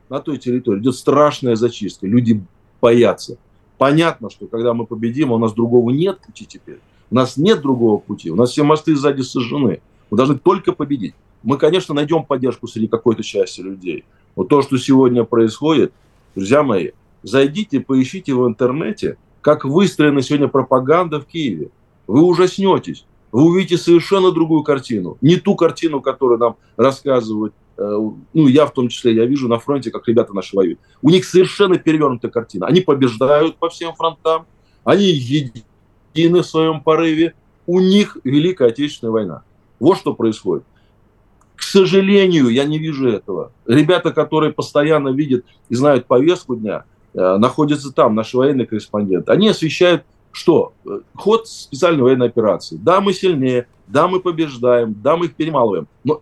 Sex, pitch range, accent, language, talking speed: male, 120-165 Hz, native, Russian, 155 wpm